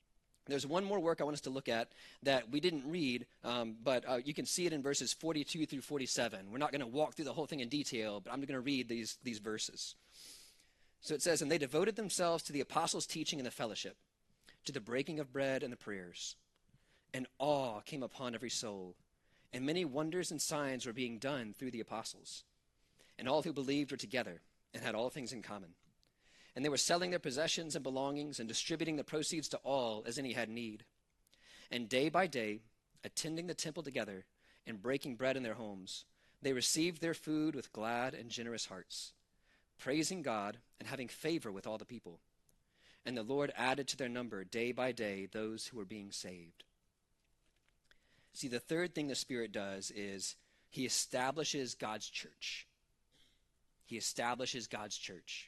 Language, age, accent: English, 30-49, American